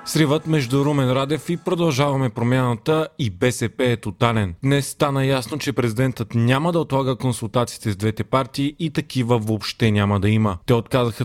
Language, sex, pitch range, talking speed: Bulgarian, male, 115-145 Hz, 165 wpm